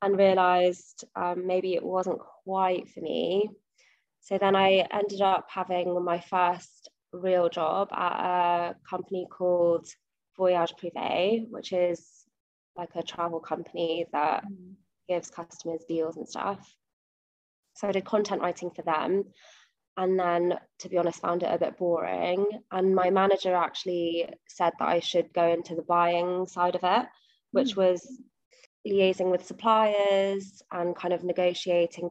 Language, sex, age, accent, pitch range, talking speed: English, female, 20-39, British, 175-195 Hz, 145 wpm